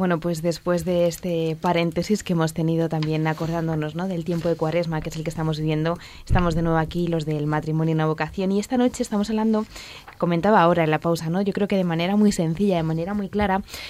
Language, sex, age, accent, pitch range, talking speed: Spanish, female, 20-39, Spanish, 165-200 Hz, 235 wpm